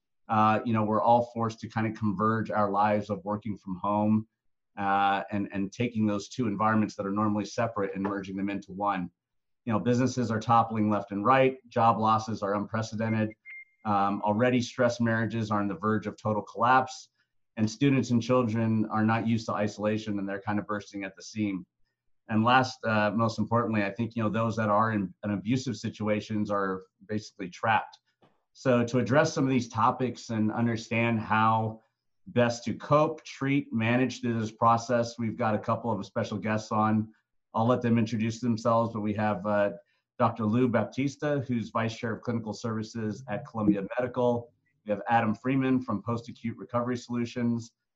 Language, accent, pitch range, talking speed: English, American, 105-120 Hz, 180 wpm